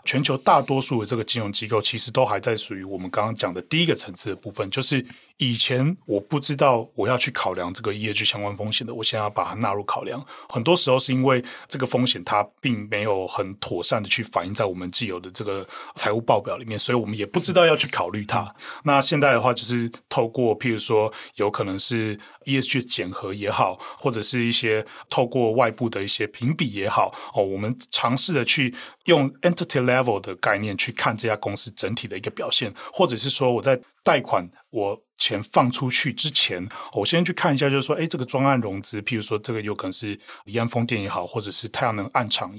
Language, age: Chinese, 30-49